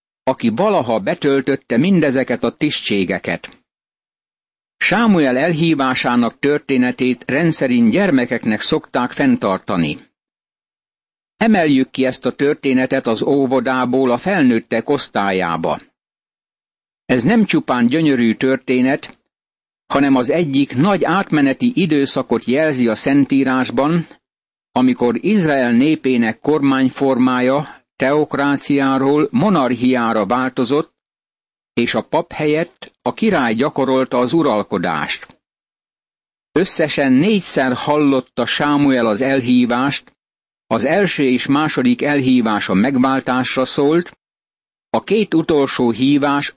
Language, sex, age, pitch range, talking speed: Hungarian, male, 60-79, 125-150 Hz, 90 wpm